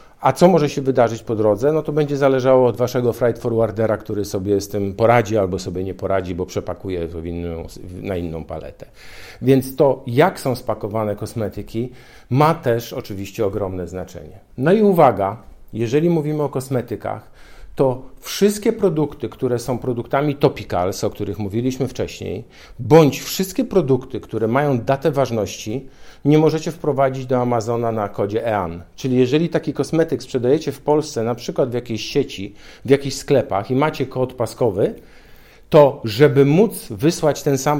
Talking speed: 155 wpm